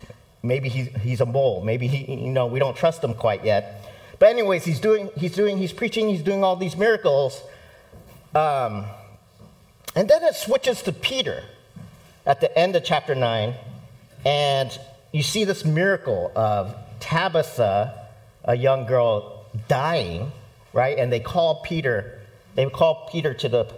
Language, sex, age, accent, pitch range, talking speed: English, male, 50-69, American, 110-155 Hz, 155 wpm